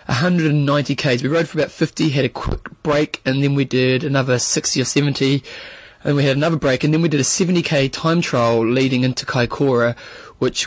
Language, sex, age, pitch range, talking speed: English, male, 20-39, 130-170 Hz, 195 wpm